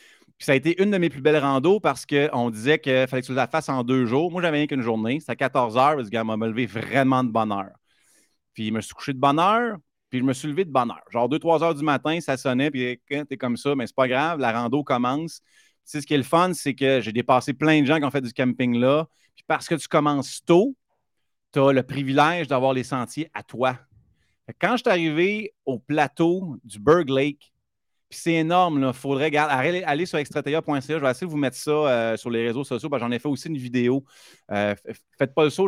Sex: male